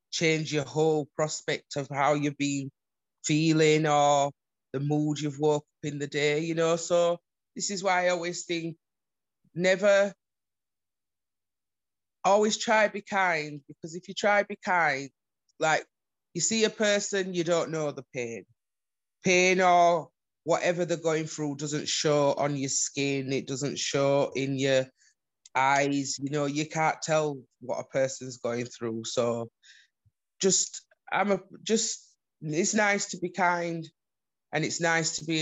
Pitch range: 140-170 Hz